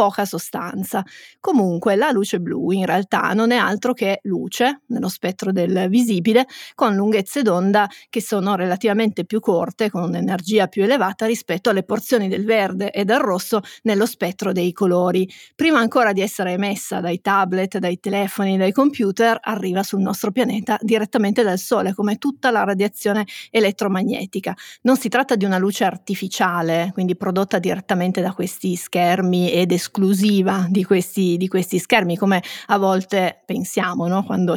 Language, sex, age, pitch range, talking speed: Italian, female, 30-49, 185-225 Hz, 155 wpm